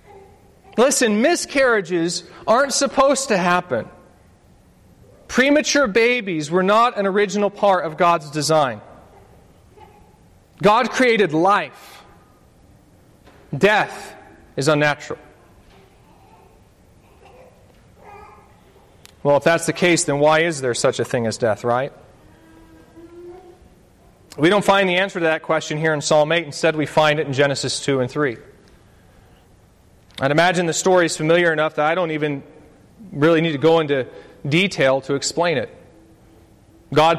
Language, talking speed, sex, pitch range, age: English, 125 wpm, male, 150-190 Hz, 40-59